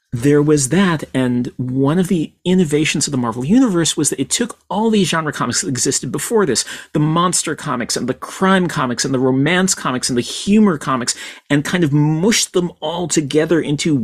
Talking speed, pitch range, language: 200 wpm, 125-175 Hz, English